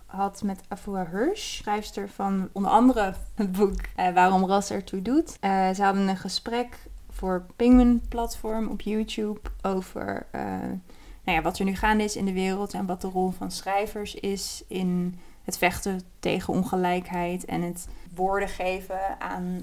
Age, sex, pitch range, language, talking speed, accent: 20-39, female, 185-215 Hz, Dutch, 170 wpm, Dutch